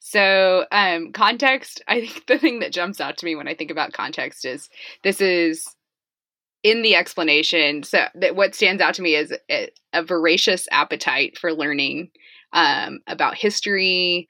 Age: 20-39